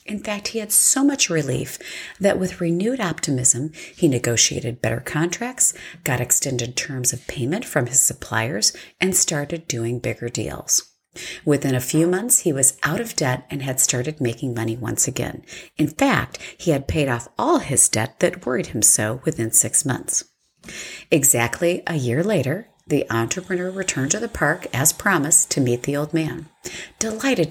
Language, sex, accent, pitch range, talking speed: English, female, American, 130-180 Hz, 170 wpm